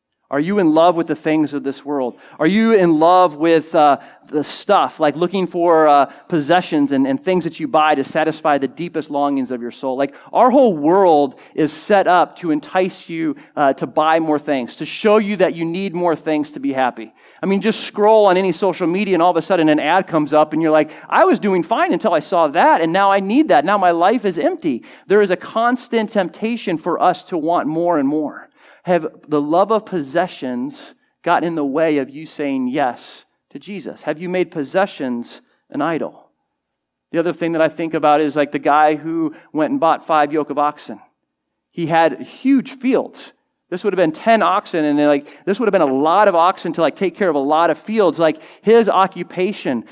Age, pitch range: 40-59, 150-195 Hz